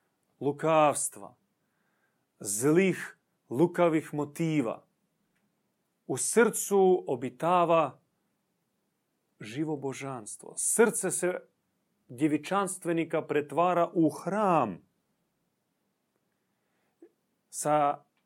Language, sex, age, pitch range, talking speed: Croatian, male, 30-49, 130-185 Hz, 50 wpm